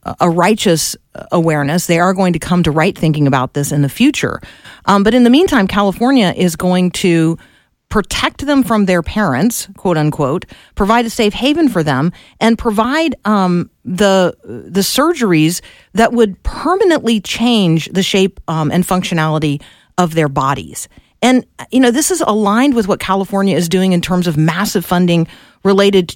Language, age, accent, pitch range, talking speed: English, 50-69, American, 175-225 Hz, 165 wpm